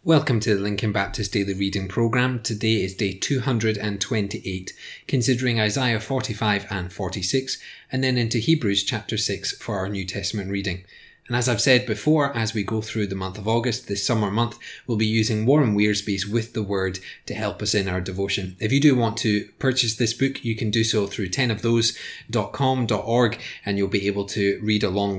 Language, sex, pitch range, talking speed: English, male, 100-125 Hz, 190 wpm